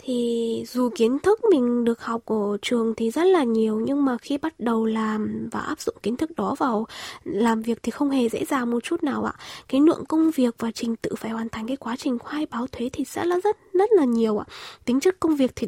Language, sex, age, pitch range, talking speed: Vietnamese, female, 20-39, 230-310 Hz, 255 wpm